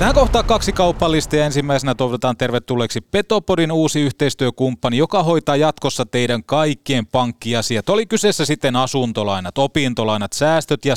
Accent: native